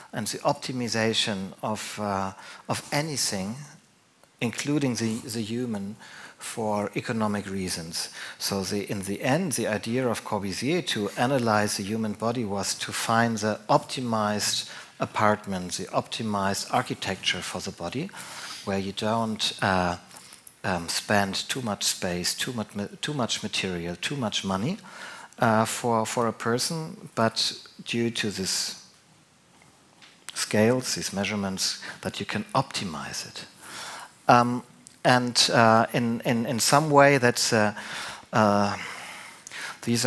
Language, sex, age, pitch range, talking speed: German, male, 50-69, 100-125 Hz, 130 wpm